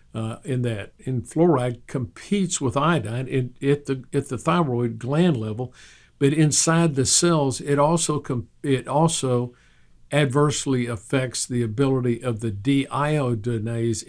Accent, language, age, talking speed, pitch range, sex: American, English, 50-69, 130 wpm, 115-140 Hz, male